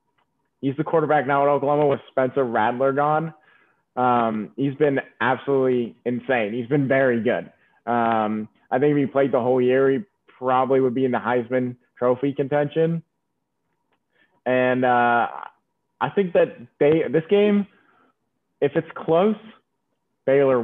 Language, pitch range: English, 125-150 Hz